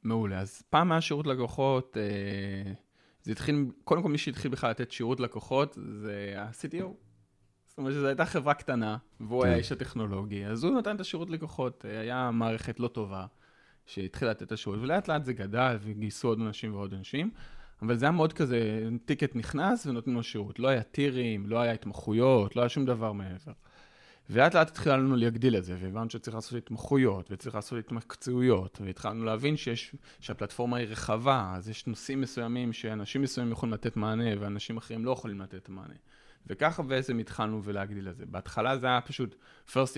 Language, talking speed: Hebrew, 175 wpm